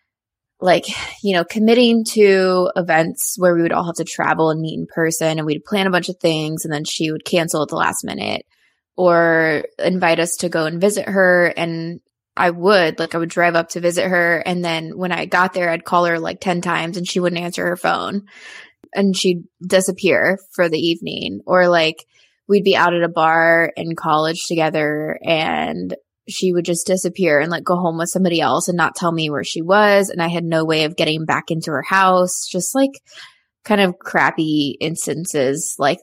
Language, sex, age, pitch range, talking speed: English, female, 20-39, 160-185 Hz, 205 wpm